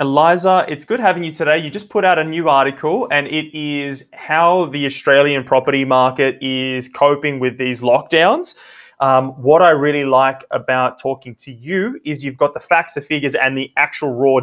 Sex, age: male, 20-39